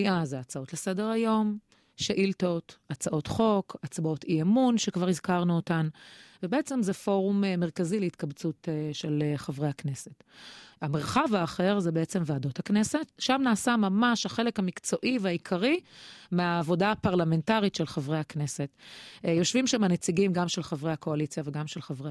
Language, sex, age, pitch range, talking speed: Hebrew, female, 30-49, 165-205 Hz, 130 wpm